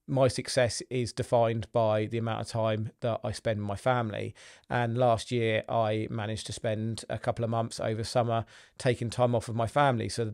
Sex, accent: male, British